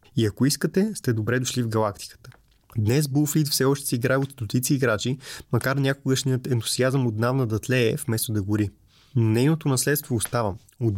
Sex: male